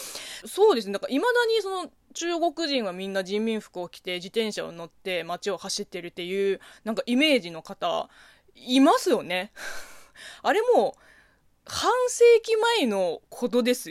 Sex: female